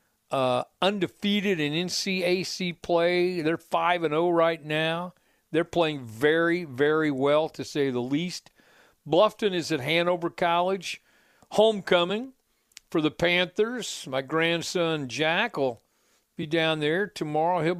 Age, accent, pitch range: 50-69, American, 135-175 Hz